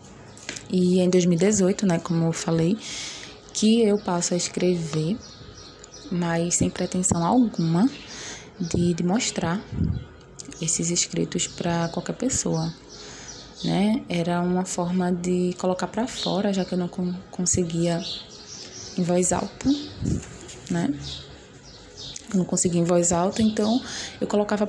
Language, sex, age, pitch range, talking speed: Portuguese, female, 20-39, 170-195 Hz, 120 wpm